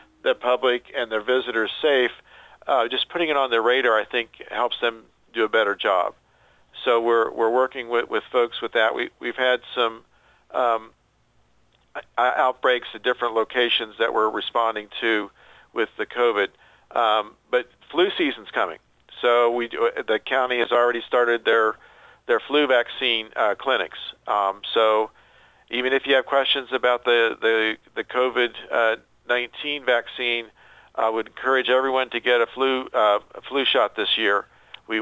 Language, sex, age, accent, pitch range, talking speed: English, male, 50-69, American, 115-130 Hz, 165 wpm